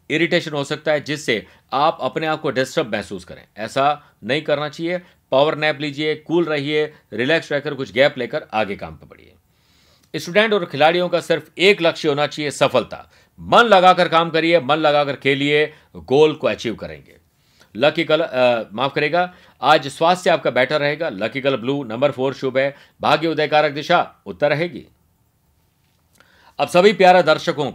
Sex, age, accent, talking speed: male, 50-69, native, 165 wpm